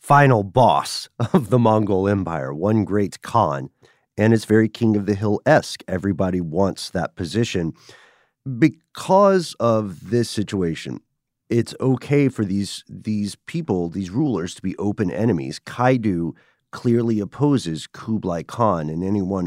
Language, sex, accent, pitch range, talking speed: English, male, American, 95-125 Hz, 135 wpm